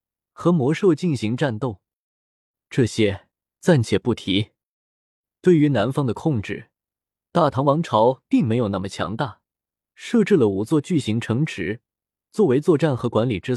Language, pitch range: Chinese, 115-160 Hz